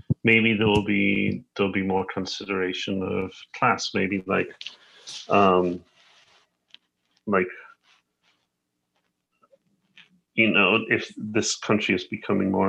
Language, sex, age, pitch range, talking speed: English, male, 40-59, 85-110 Hz, 110 wpm